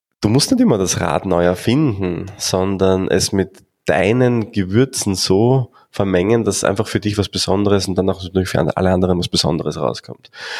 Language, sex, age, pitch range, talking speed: German, male, 20-39, 90-100 Hz, 170 wpm